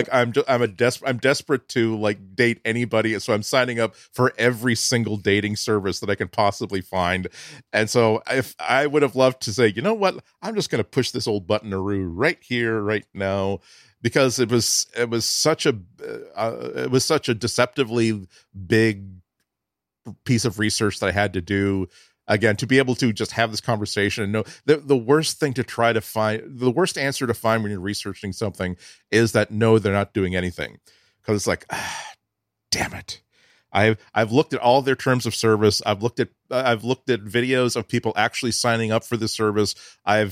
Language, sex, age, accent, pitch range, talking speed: English, male, 40-59, American, 100-120 Hz, 205 wpm